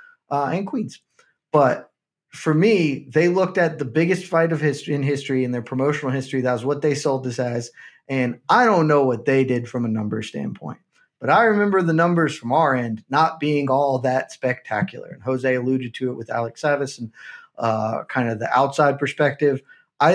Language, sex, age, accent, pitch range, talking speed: English, male, 20-39, American, 130-170 Hz, 200 wpm